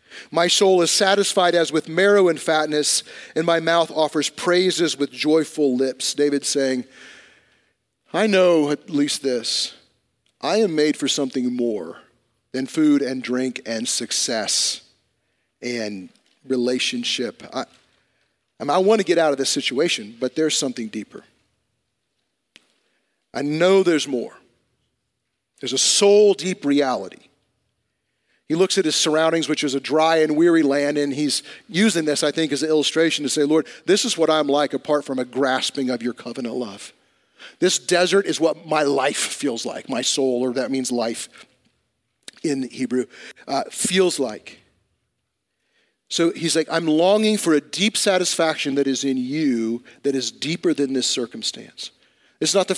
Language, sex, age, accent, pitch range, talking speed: English, male, 40-59, American, 135-170 Hz, 160 wpm